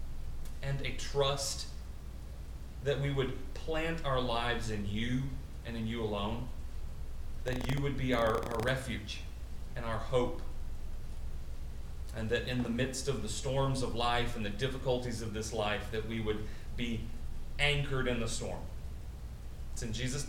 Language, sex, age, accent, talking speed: English, male, 40-59, American, 155 wpm